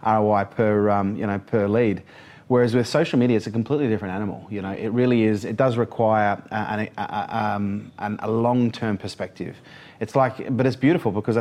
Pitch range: 100-120 Hz